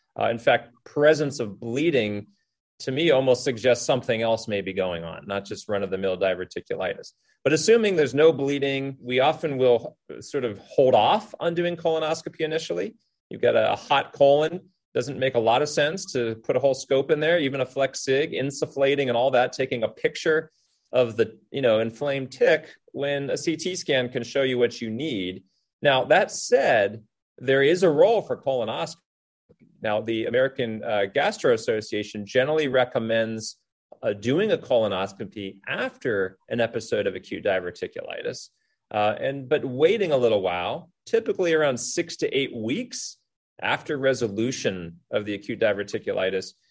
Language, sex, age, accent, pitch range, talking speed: English, male, 30-49, American, 115-160 Hz, 160 wpm